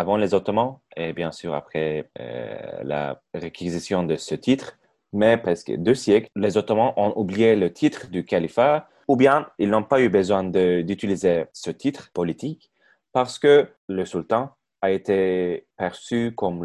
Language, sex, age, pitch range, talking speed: Turkish, male, 30-49, 95-115 Hz, 160 wpm